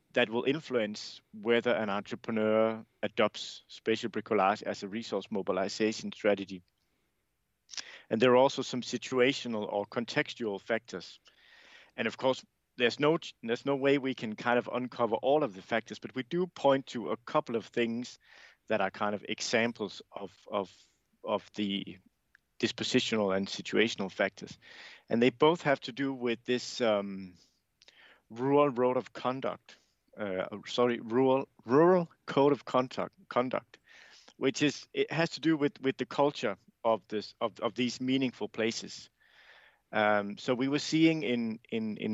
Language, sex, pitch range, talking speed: English, male, 110-135 Hz, 155 wpm